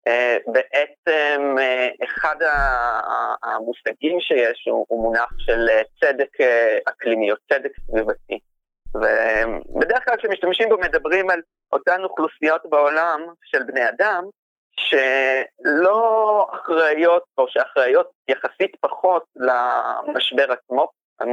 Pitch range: 120-185 Hz